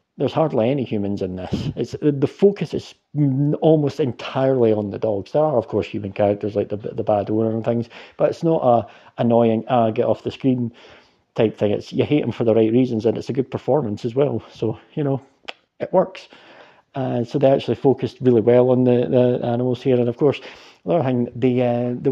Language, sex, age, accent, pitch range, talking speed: English, male, 40-59, British, 120-140 Hz, 215 wpm